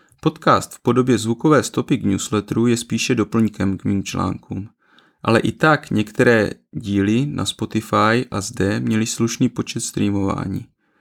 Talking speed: 140 wpm